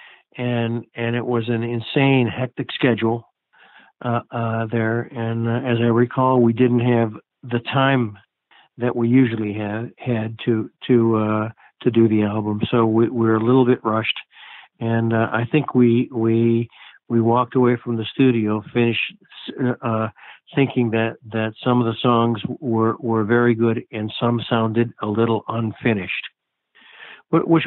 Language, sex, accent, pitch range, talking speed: English, male, American, 115-130 Hz, 160 wpm